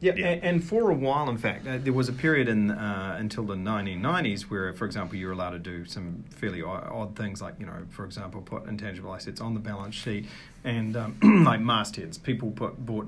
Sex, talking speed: male, 215 wpm